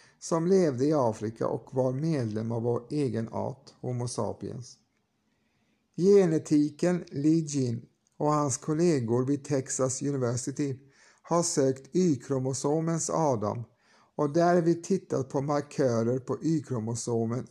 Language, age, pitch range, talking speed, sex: Swedish, 60-79, 120-155 Hz, 120 wpm, male